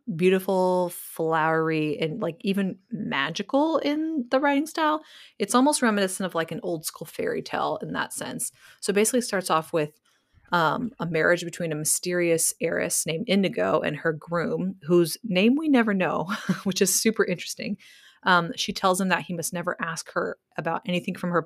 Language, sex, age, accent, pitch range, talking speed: English, female, 30-49, American, 165-215 Hz, 175 wpm